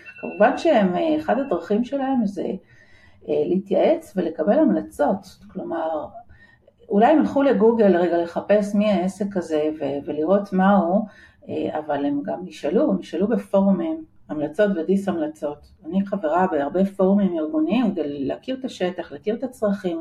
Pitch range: 170-215 Hz